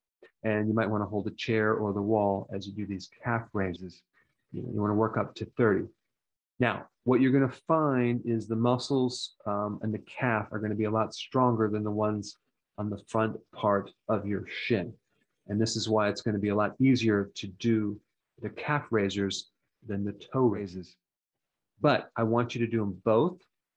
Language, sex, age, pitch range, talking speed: English, male, 30-49, 105-120 Hz, 205 wpm